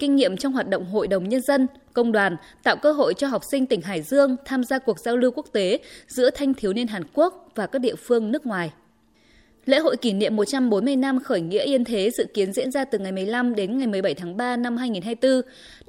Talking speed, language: 240 wpm, Vietnamese